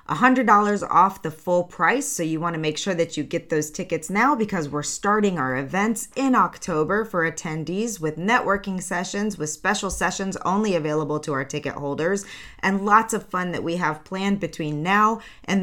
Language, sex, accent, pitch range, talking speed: English, female, American, 155-195 Hz, 190 wpm